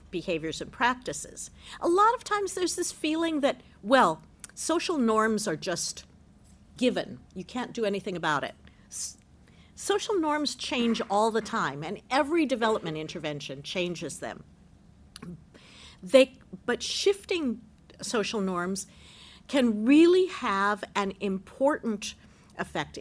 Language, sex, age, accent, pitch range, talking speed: English, female, 50-69, American, 175-250 Hz, 115 wpm